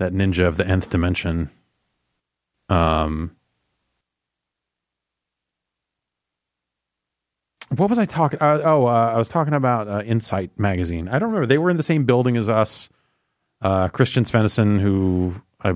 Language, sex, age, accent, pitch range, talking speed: English, male, 30-49, American, 85-115 Hz, 140 wpm